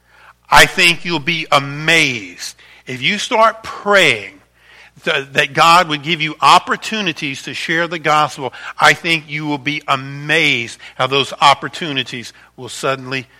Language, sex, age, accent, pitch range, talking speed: English, male, 50-69, American, 130-180 Hz, 135 wpm